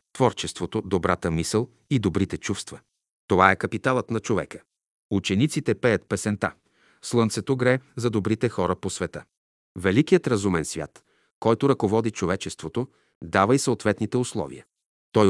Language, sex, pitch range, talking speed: Bulgarian, male, 95-125 Hz, 125 wpm